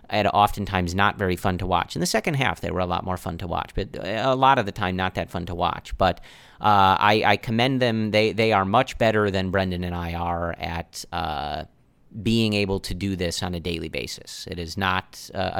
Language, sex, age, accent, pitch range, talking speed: English, male, 30-49, American, 90-105 Hz, 230 wpm